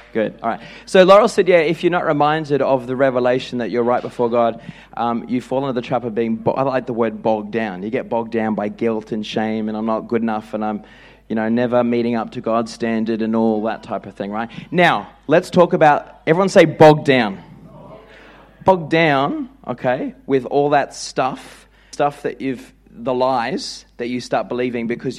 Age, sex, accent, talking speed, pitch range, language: 30-49, male, Australian, 210 wpm, 120-155 Hz, English